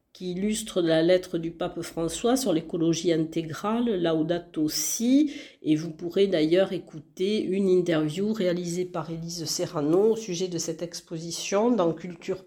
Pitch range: 165-210 Hz